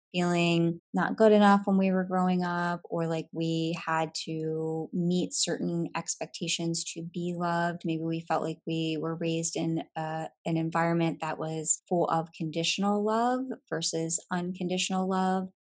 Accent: American